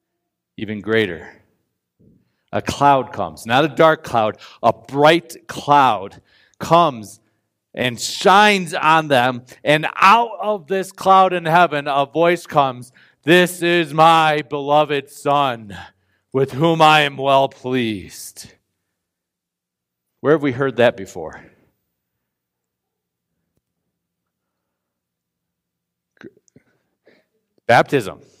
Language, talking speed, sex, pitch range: English, 95 wpm, male, 95-150 Hz